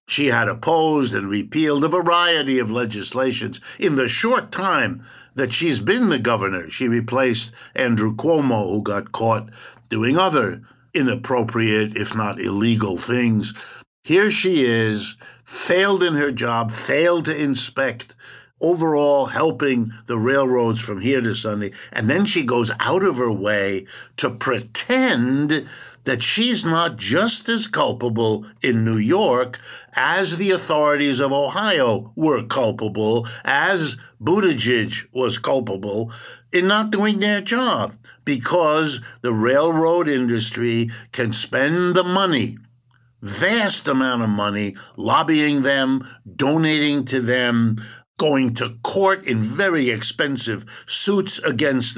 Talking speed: 125 wpm